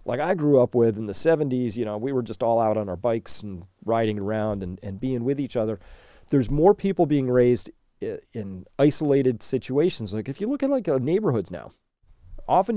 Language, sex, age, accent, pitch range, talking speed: English, male, 40-59, American, 115-160 Hz, 205 wpm